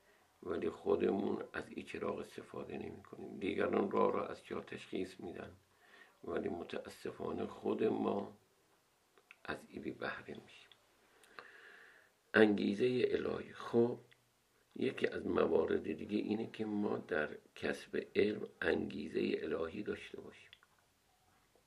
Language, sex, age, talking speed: Persian, male, 50-69, 110 wpm